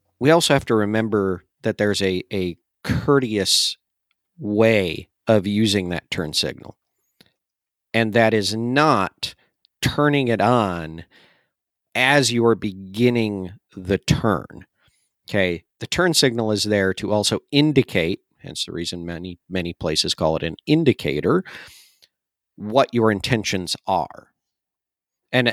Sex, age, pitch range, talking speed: male, 50-69, 95-125 Hz, 125 wpm